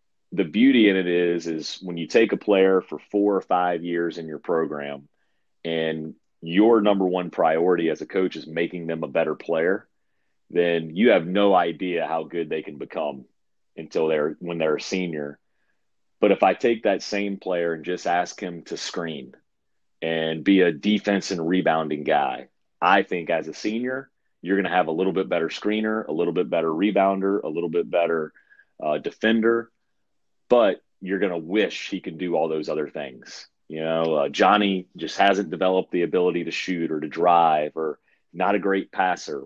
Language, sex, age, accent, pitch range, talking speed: English, male, 30-49, American, 80-95 Hz, 190 wpm